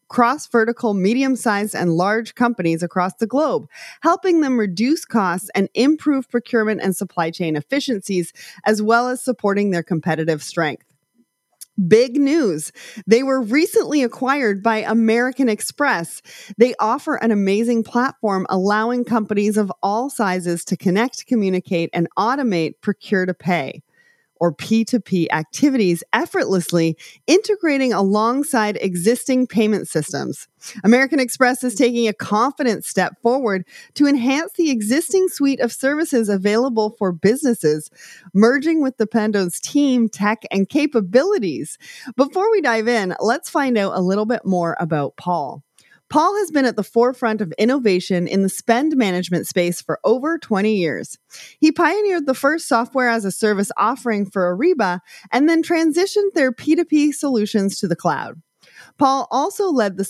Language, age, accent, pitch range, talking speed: English, 30-49, American, 190-265 Hz, 140 wpm